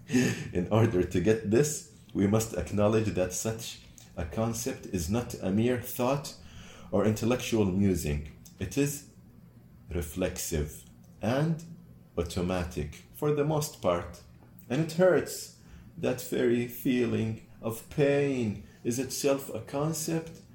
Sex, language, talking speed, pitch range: male, Arabic, 120 wpm, 85-115 Hz